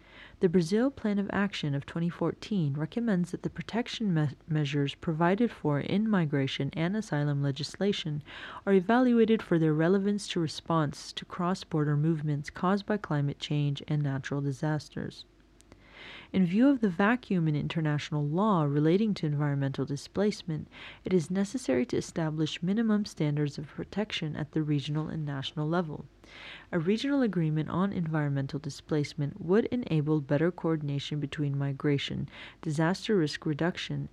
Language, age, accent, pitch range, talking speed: English, 30-49, American, 150-195 Hz, 135 wpm